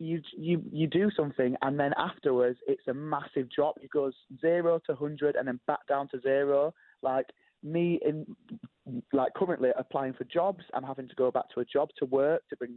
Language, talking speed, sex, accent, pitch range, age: English, 200 wpm, male, British, 130-170 Hz, 20-39